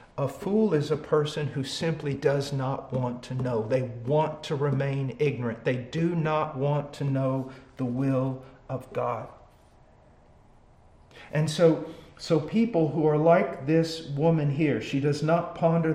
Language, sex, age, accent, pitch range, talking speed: English, male, 50-69, American, 135-175 Hz, 155 wpm